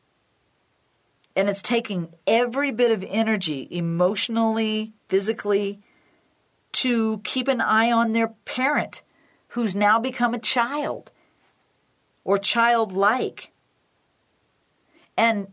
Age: 50-69